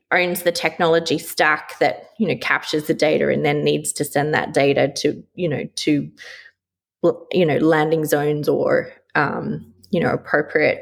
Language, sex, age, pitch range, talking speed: English, female, 20-39, 150-185 Hz, 165 wpm